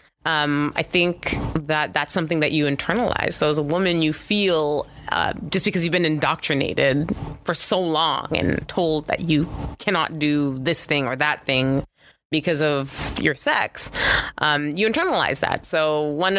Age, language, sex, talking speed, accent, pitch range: 20-39, English, female, 165 wpm, American, 145-170 Hz